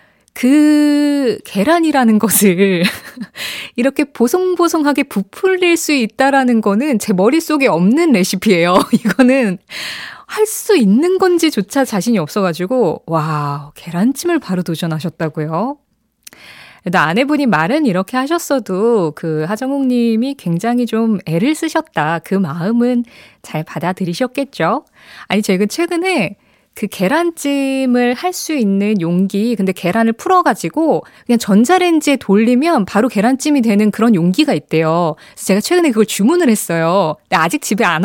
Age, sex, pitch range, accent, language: 20-39, female, 185-275 Hz, native, Korean